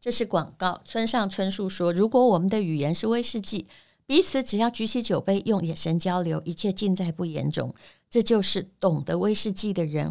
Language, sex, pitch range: Chinese, female, 170-225 Hz